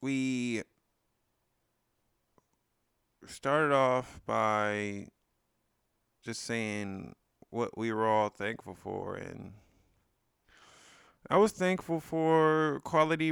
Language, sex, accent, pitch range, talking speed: English, male, American, 105-130 Hz, 80 wpm